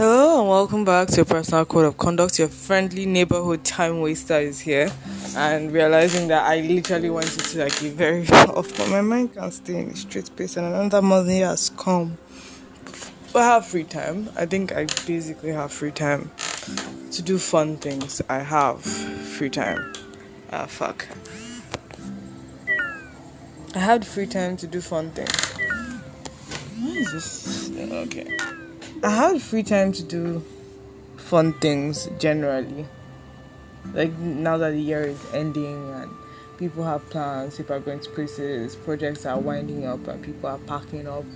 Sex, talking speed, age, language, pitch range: female, 160 wpm, 20-39, English, 130-175 Hz